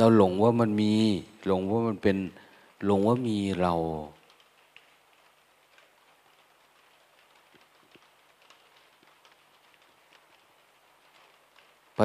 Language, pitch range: Thai, 95-115 Hz